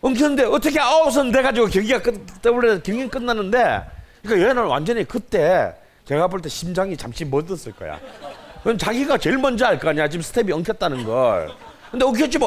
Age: 30-49